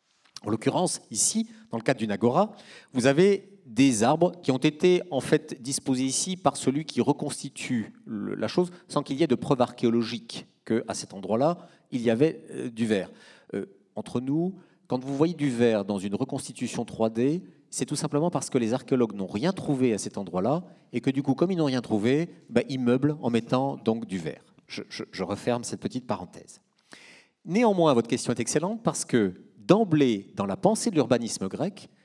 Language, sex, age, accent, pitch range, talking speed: French, male, 50-69, French, 120-195 Hz, 195 wpm